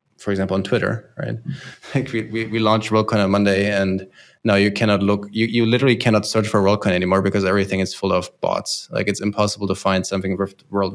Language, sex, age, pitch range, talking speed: English, male, 20-39, 95-110 Hz, 220 wpm